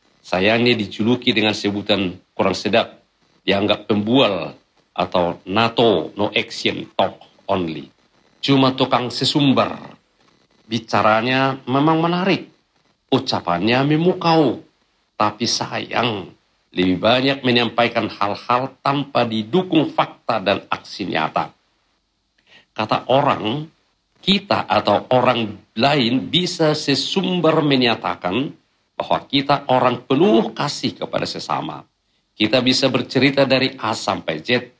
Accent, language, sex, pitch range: native, Indonesian, male, 105-140 Hz